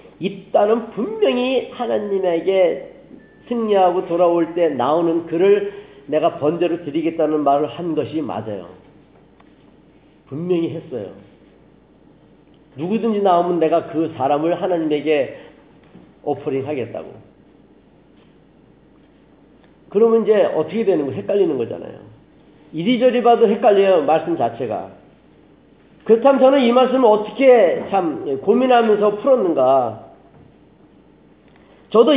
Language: Korean